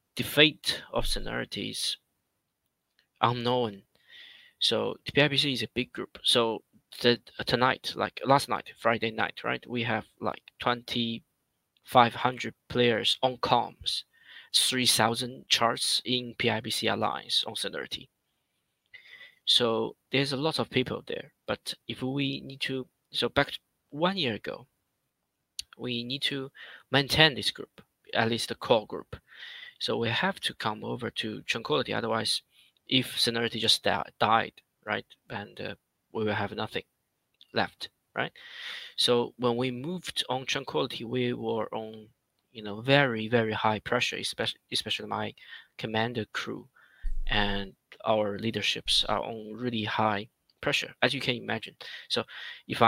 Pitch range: 110-135 Hz